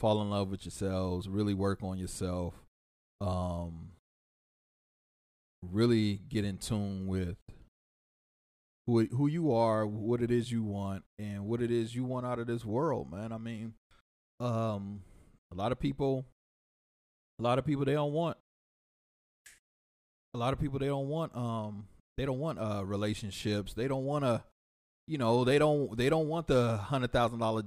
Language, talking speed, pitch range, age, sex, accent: English, 165 wpm, 100-125 Hz, 30-49, male, American